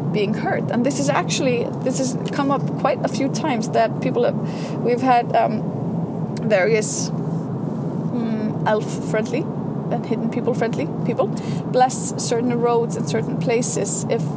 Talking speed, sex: 150 wpm, female